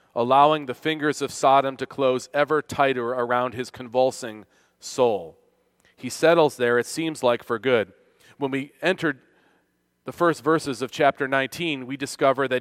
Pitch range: 125-150 Hz